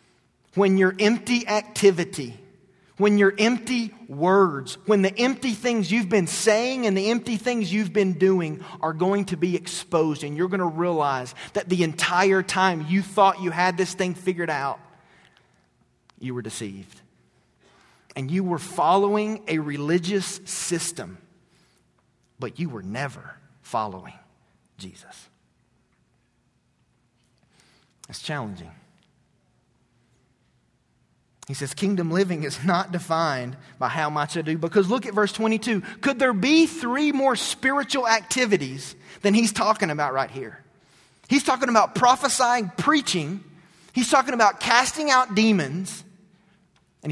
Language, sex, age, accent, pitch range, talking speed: English, male, 40-59, American, 165-215 Hz, 130 wpm